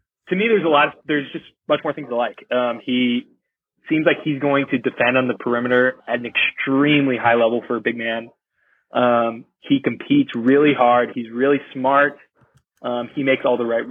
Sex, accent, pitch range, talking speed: male, American, 120-145 Hz, 205 wpm